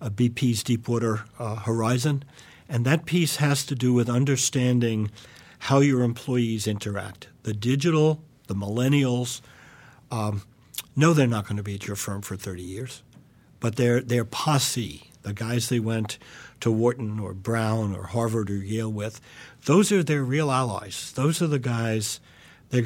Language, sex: English, male